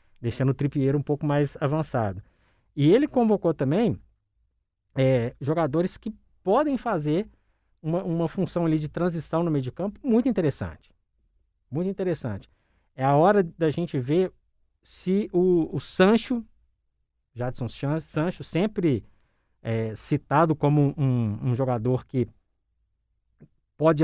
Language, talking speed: Portuguese, 120 wpm